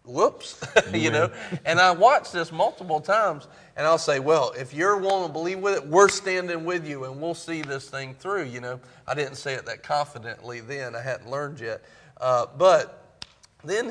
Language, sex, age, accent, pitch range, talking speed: English, male, 40-59, American, 150-215 Hz, 200 wpm